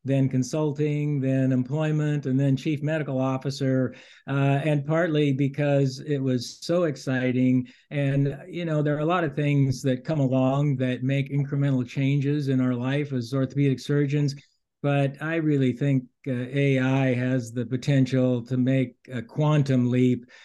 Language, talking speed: English, 160 wpm